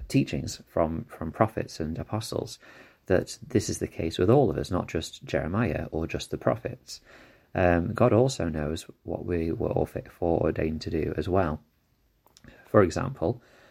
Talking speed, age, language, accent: 170 wpm, 30-49, English, British